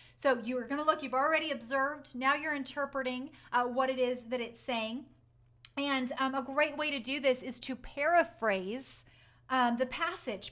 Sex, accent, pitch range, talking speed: female, American, 235-280 Hz, 190 wpm